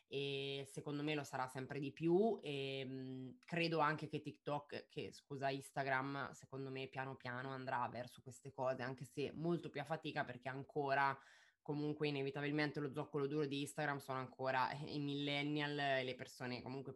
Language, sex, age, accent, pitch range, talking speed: Italian, female, 20-39, native, 135-155 Hz, 165 wpm